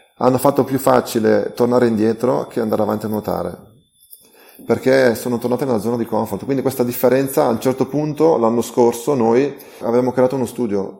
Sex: male